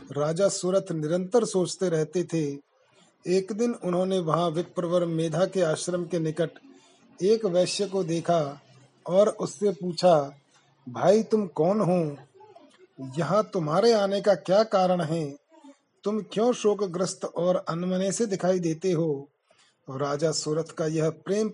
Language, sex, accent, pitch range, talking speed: Hindi, male, native, 160-190 Hz, 130 wpm